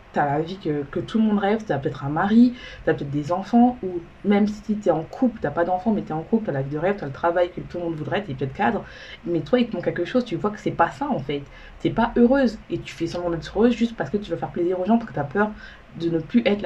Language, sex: French, female